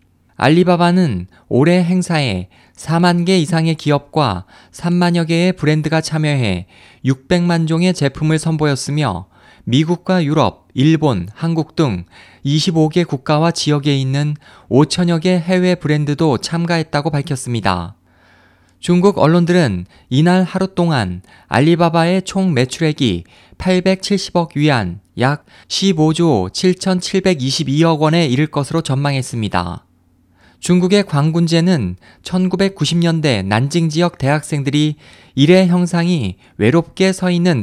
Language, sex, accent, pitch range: Korean, male, native, 125-175 Hz